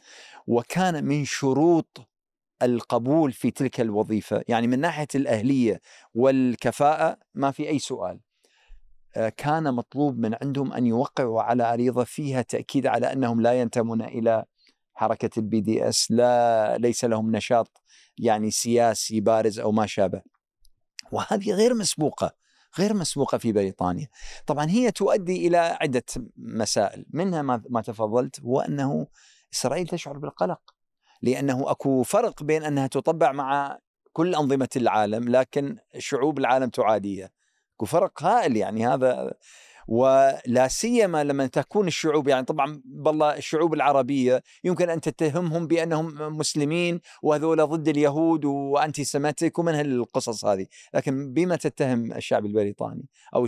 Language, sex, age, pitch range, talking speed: Arabic, male, 50-69, 115-155 Hz, 125 wpm